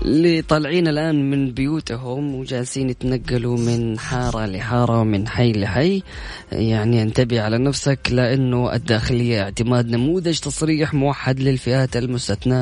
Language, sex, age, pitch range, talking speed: Arabic, female, 20-39, 110-130 Hz, 120 wpm